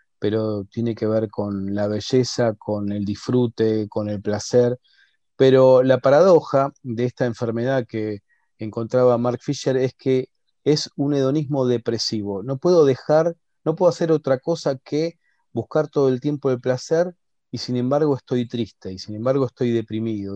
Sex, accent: male, Argentinian